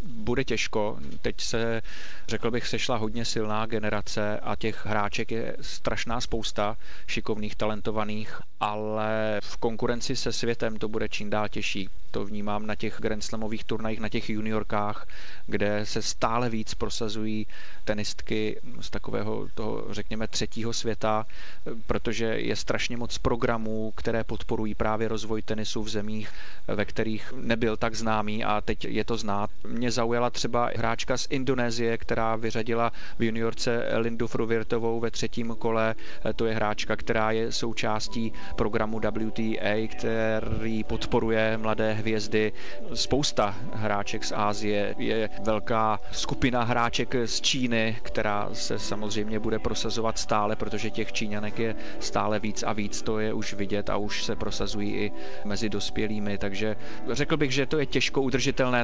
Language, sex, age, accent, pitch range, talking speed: Czech, male, 30-49, native, 105-115 Hz, 145 wpm